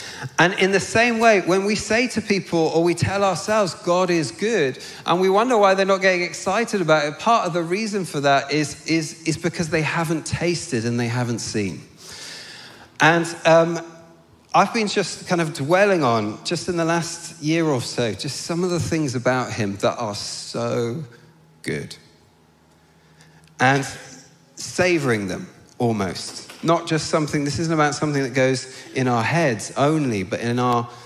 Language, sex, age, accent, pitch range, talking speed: English, male, 40-59, British, 115-165 Hz, 175 wpm